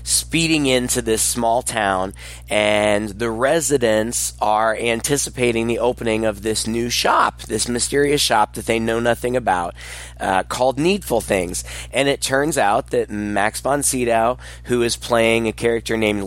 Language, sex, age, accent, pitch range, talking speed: English, male, 20-39, American, 110-140 Hz, 150 wpm